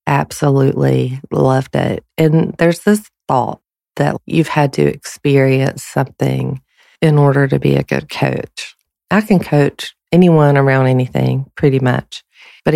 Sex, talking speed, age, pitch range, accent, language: female, 135 wpm, 40-59, 130-150 Hz, American, English